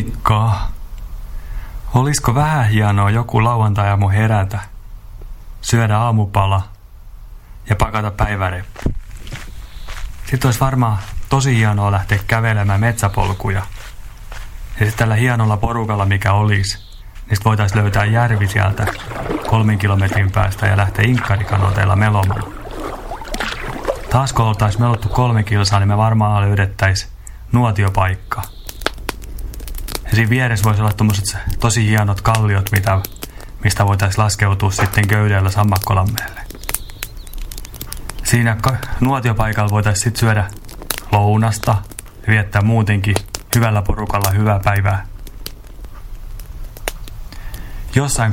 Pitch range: 100-110 Hz